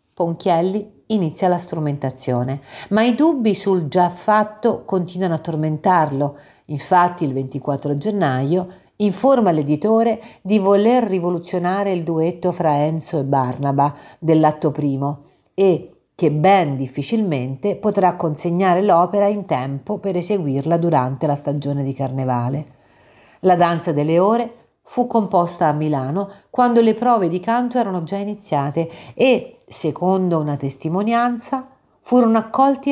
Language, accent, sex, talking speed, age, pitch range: Italian, native, female, 125 wpm, 50-69, 145-205 Hz